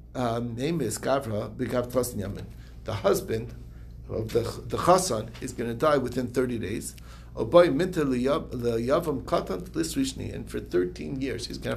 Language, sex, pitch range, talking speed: English, male, 115-155 Hz, 120 wpm